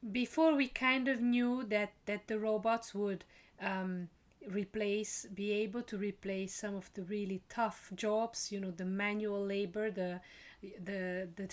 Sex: female